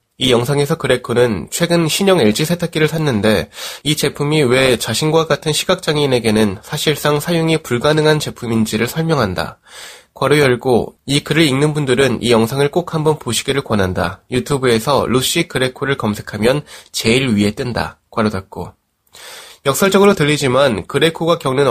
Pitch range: 115-160 Hz